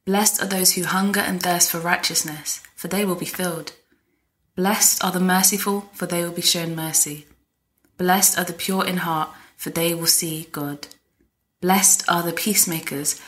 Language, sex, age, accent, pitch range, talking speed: English, female, 20-39, British, 170-205 Hz, 175 wpm